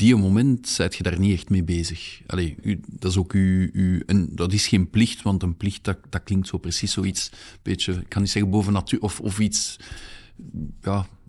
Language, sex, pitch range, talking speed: Dutch, male, 95-115 Hz, 205 wpm